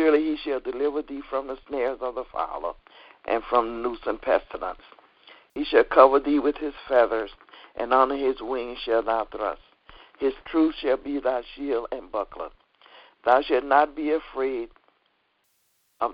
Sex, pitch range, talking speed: male, 115-150 Hz, 165 wpm